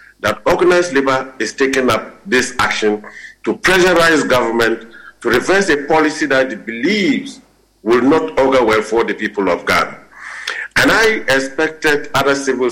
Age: 50-69